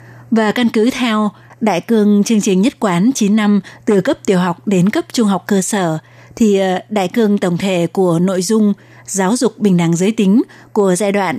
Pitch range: 185-215 Hz